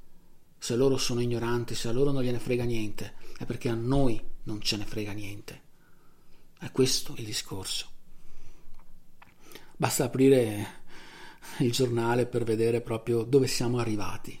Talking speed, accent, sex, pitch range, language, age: 140 wpm, native, male, 110-130 Hz, Italian, 40-59